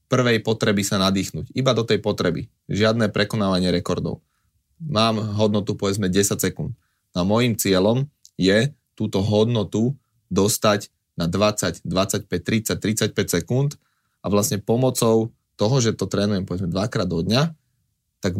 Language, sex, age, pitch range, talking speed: Slovak, male, 30-49, 95-115 Hz, 135 wpm